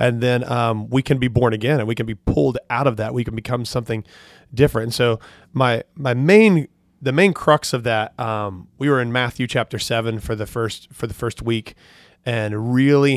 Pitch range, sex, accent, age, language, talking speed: 115-135 Hz, male, American, 30-49, English, 215 wpm